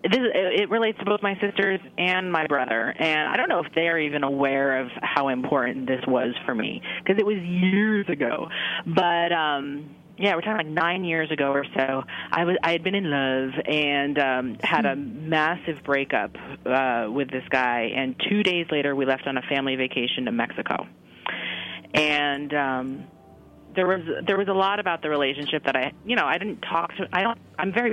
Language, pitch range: English, 135-165 Hz